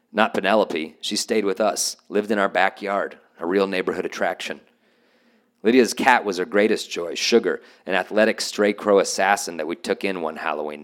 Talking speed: 175 wpm